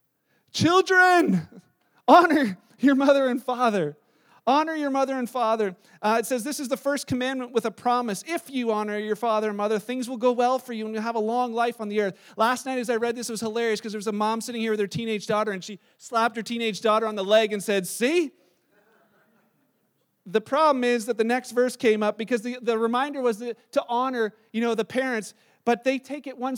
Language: English